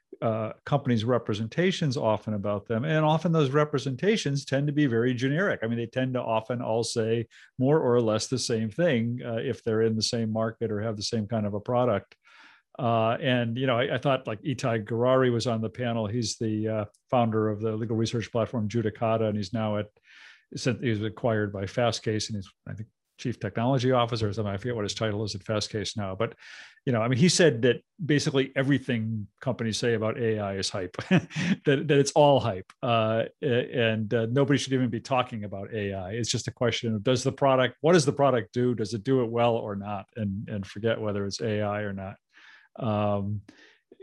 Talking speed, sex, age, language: 210 wpm, male, 50-69, English